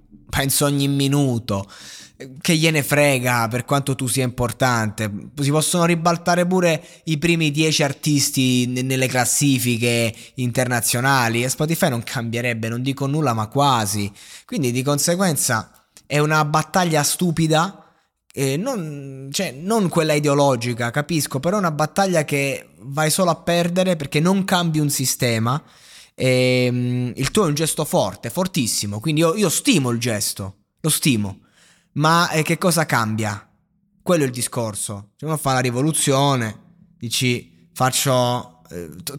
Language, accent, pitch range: Italian, native, 125-165 Hz